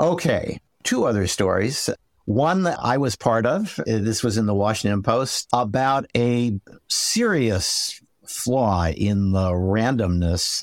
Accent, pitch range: American, 85-110 Hz